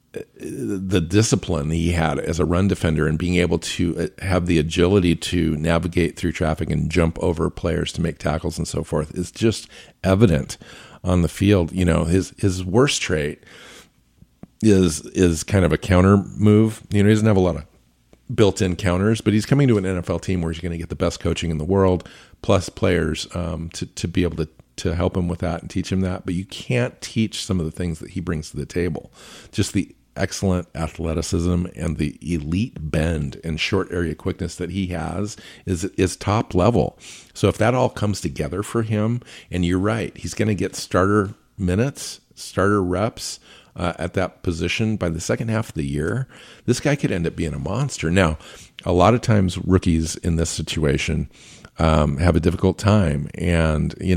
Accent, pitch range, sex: American, 80-100 Hz, male